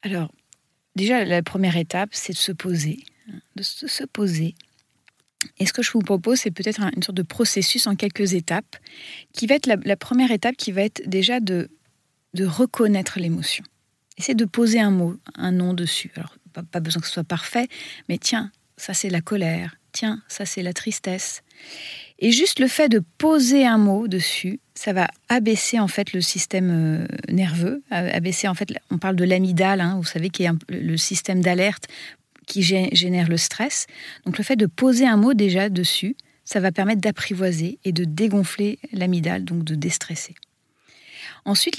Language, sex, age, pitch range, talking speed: French, female, 30-49, 175-225 Hz, 180 wpm